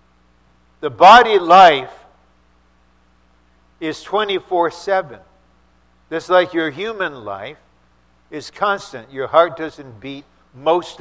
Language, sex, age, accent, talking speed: English, male, 60-79, American, 95 wpm